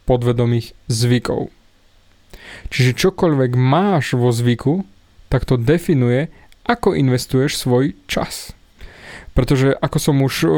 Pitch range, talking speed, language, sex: 125-155 Hz, 100 wpm, Slovak, male